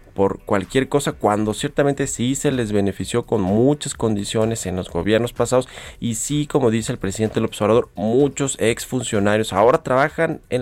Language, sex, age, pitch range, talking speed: Spanish, male, 30-49, 100-135 Hz, 165 wpm